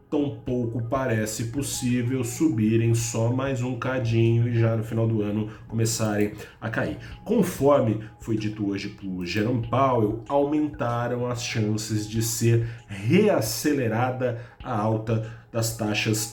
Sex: male